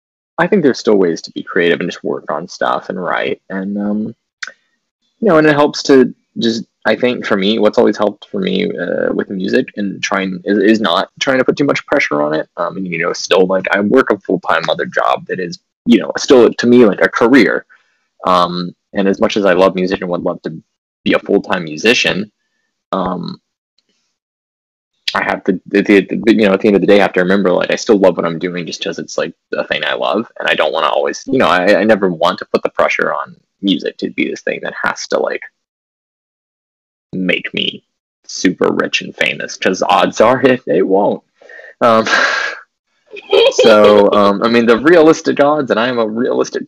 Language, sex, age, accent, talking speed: English, male, 20-39, American, 215 wpm